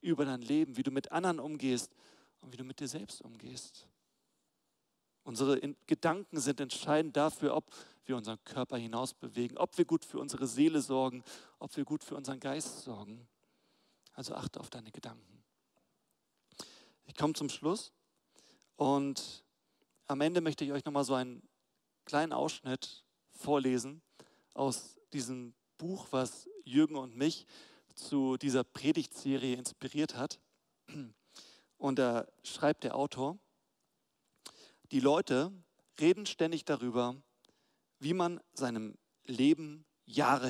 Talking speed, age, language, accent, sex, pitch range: 130 wpm, 40-59, German, German, male, 130-155 Hz